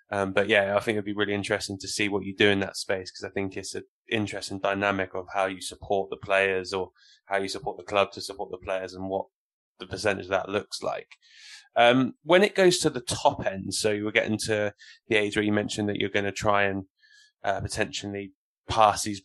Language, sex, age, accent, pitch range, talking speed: English, male, 20-39, British, 105-120 Hz, 235 wpm